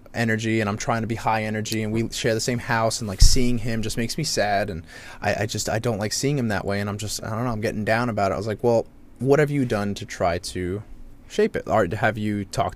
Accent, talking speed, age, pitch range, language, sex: American, 290 wpm, 20-39, 100-120 Hz, English, male